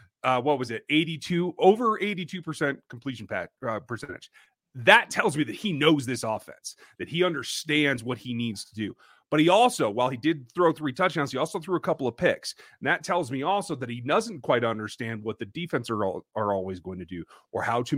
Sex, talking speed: male, 220 wpm